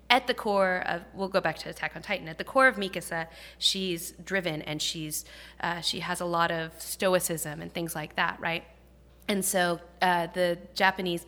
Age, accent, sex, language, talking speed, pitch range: 20-39, American, female, English, 195 wpm, 160-190 Hz